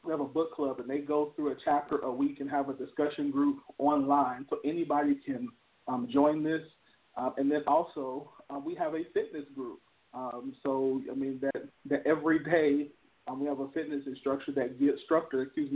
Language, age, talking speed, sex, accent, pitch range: English, 40-59, 200 wpm, male, American, 135-155 Hz